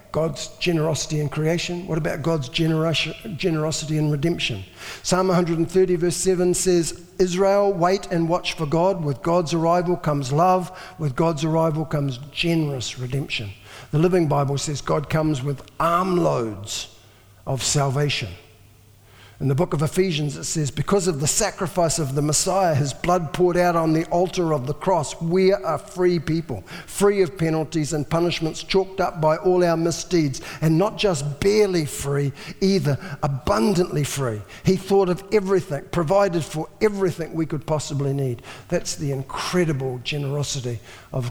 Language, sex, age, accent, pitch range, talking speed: English, male, 50-69, Australian, 140-175 Hz, 155 wpm